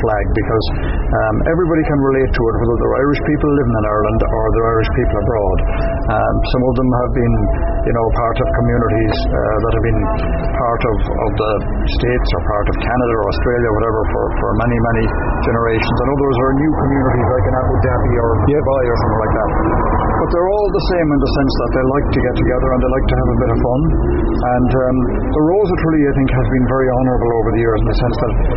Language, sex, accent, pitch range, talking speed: English, male, Irish, 105-130 Hz, 230 wpm